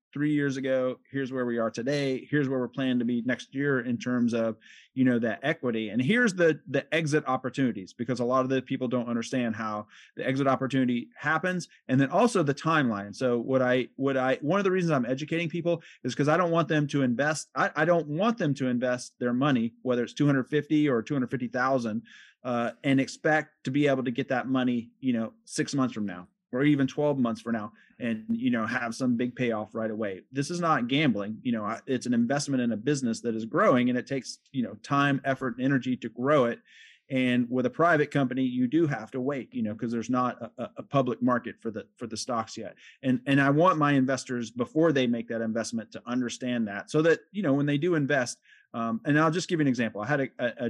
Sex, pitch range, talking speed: male, 120-145 Hz, 235 wpm